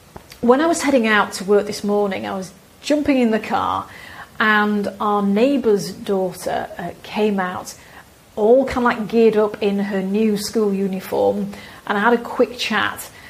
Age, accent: 40-59, British